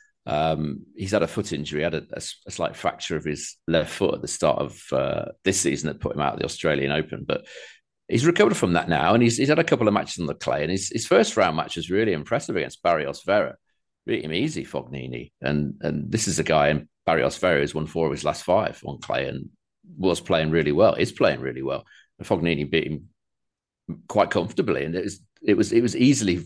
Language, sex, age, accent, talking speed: English, male, 40-59, British, 235 wpm